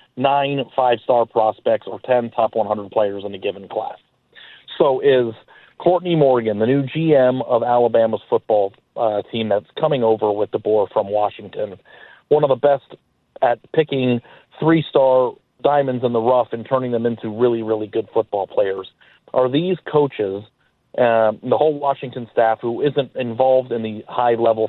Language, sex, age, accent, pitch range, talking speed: English, male, 40-59, American, 115-140 Hz, 160 wpm